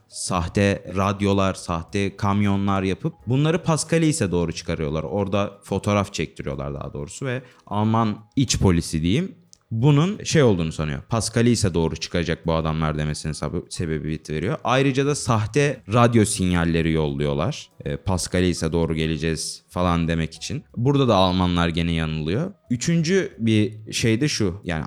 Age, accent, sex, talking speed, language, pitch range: 30-49, native, male, 140 wpm, Turkish, 85-135 Hz